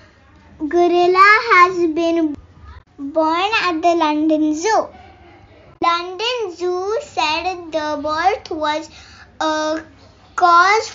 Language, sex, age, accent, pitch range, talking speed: English, male, 20-39, Indian, 325-385 Hz, 90 wpm